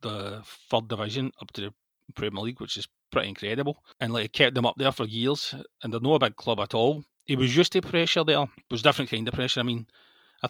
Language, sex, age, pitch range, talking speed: English, male, 30-49, 115-135 Hz, 250 wpm